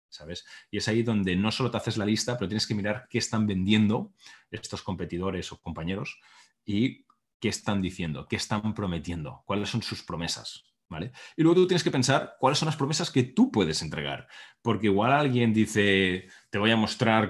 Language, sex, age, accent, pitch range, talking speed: Spanish, male, 30-49, Spanish, 95-115 Hz, 195 wpm